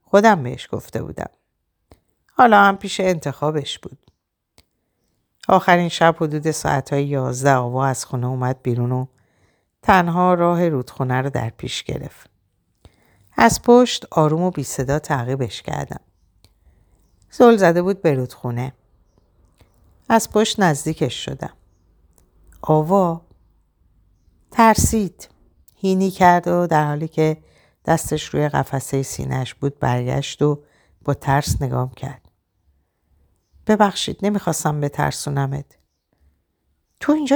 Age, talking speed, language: 50-69, 110 wpm, Persian